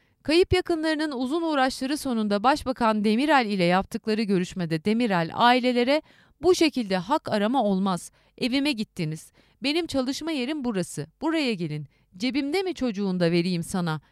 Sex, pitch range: female, 180-285 Hz